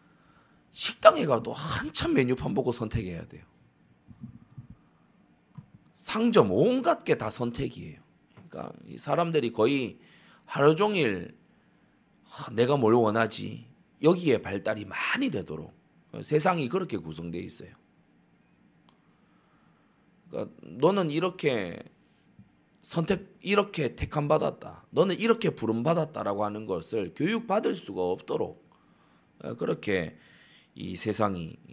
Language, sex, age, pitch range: Korean, male, 30-49, 100-170 Hz